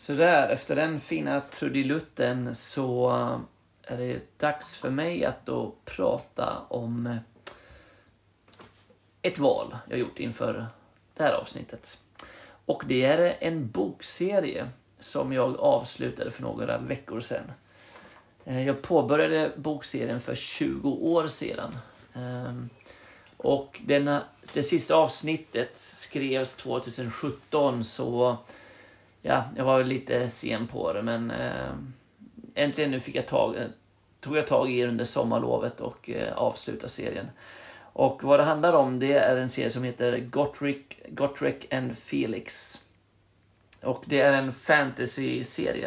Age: 30-49